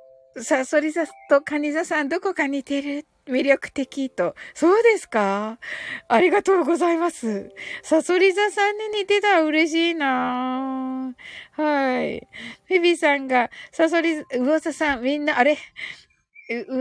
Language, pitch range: Japanese, 255-355 Hz